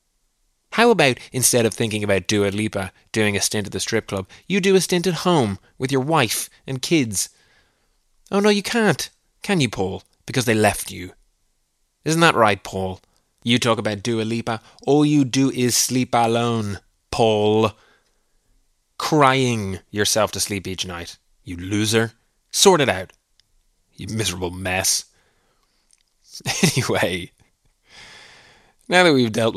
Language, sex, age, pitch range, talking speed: English, male, 20-39, 100-130 Hz, 145 wpm